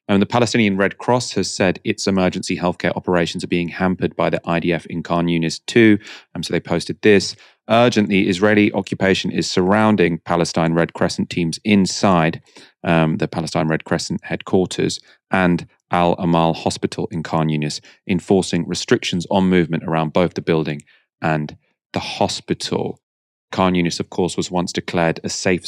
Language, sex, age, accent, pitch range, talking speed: English, male, 30-49, British, 80-95 Hz, 160 wpm